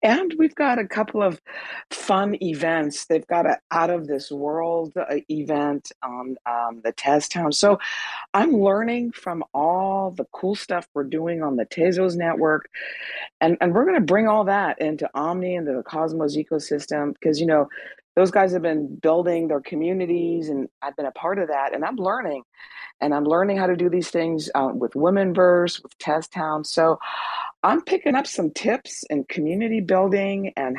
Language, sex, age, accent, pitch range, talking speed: English, female, 50-69, American, 150-195 Hz, 185 wpm